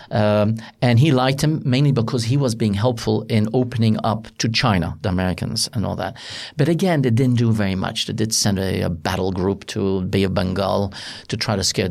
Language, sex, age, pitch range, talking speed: English, male, 50-69, 100-120 Hz, 215 wpm